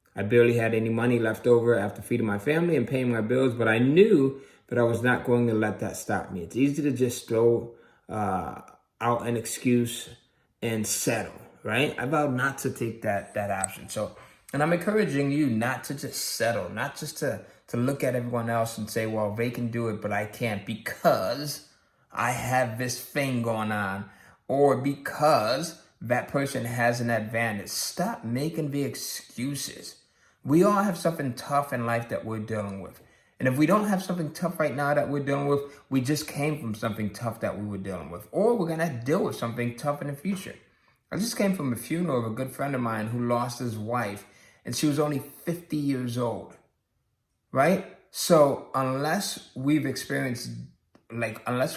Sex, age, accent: male, 20-39, American